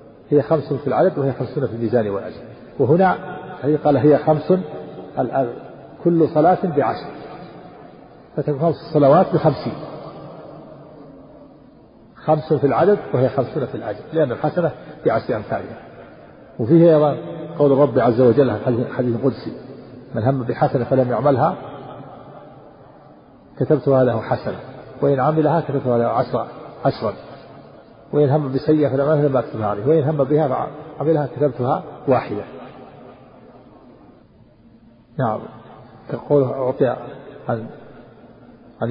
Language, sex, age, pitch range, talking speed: Arabic, male, 50-69, 120-150 Hz, 110 wpm